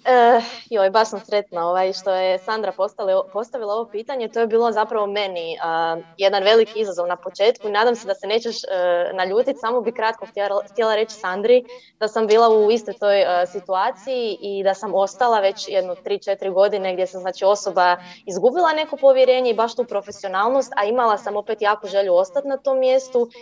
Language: Croatian